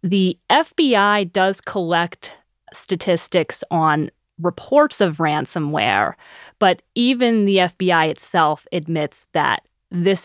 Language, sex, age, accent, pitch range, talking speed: English, female, 30-49, American, 155-190 Hz, 100 wpm